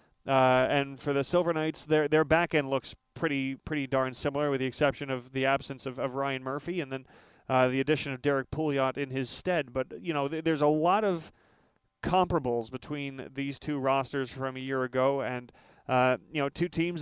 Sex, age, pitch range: male, 30-49, 135-160 Hz